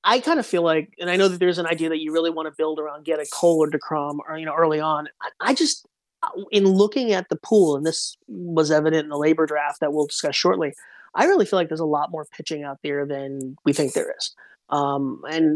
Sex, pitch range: male, 150-180 Hz